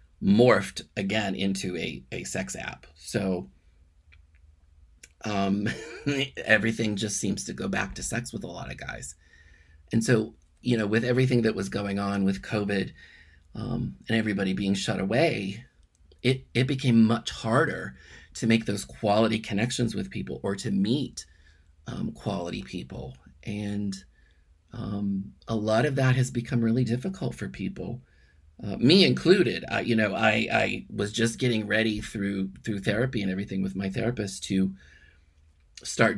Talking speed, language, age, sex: 155 wpm, English, 30-49, male